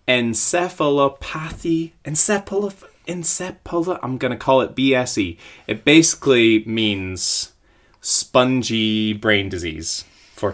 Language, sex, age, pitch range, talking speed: English, male, 20-39, 100-130 Hz, 85 wpm